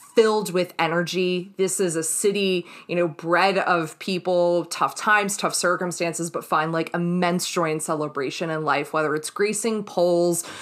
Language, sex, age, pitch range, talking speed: English, female, 20-39, 170-215 Hz, 165 wpm